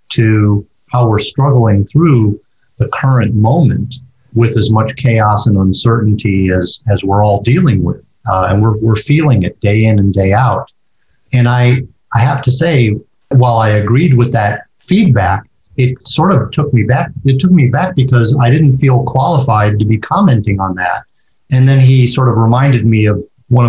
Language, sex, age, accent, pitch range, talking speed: English, male, 50-69, American, 105-130 Hz, 180 wpm